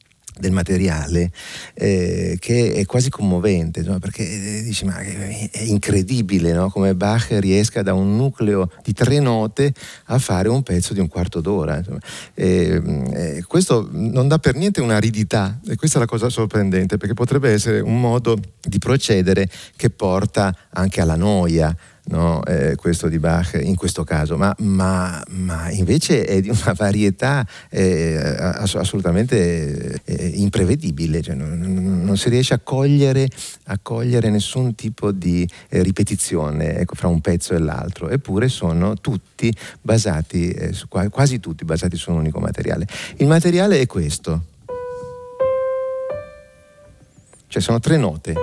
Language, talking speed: Italian, 145 wpm